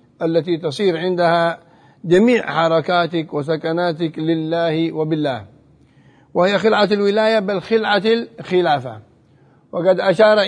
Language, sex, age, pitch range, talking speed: Arabic, male, 50-69, 165-205 Hz, 90 wpm